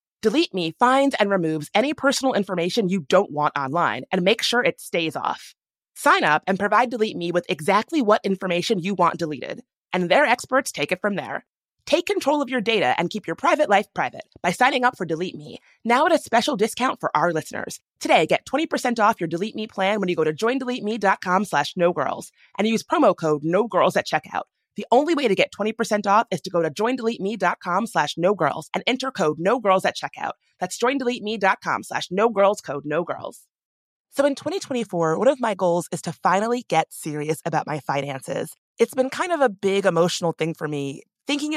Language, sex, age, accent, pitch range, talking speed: English, female, 30-49, American, 170-240 Hz, 200 wpm